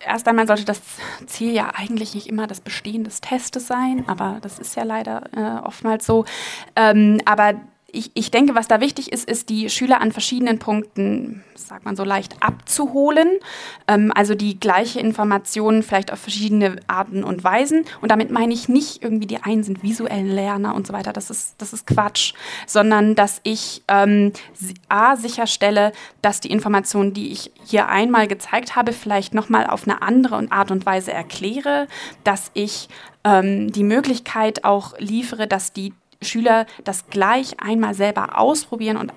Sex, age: female, 20-39